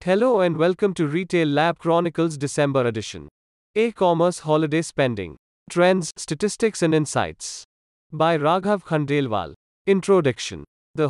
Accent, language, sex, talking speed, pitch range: Indian, English, male, 115 wpm, 135-185 Hz